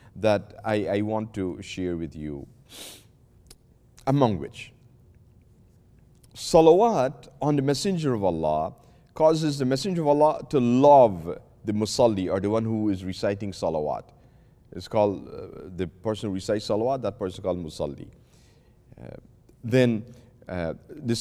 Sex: male